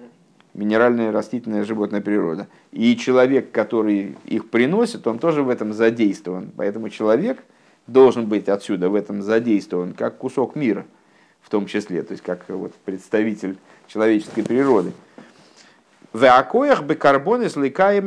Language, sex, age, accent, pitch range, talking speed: Russian, male, 50-69, native, 105-155 Hz, 115 wpm